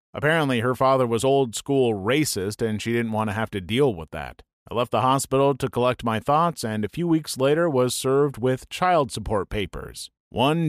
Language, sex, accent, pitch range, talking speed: English, male, American, 110-145 Hz, 200 wpm